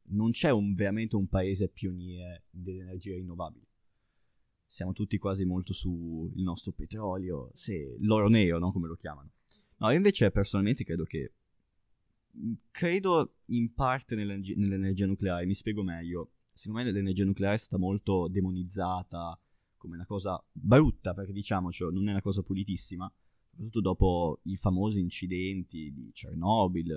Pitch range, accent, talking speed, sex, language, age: 90-105 Hz, native, 145 wpm, male, Italian, 20-39